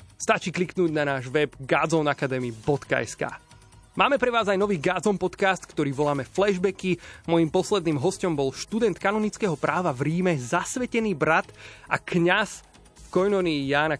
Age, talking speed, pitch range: 30-49, 135 wpm, 140-180 Hz